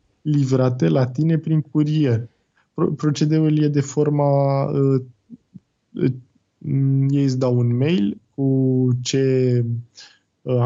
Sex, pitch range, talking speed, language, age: male, 120-150 Hz, 115 wpm, Romanian, 20-39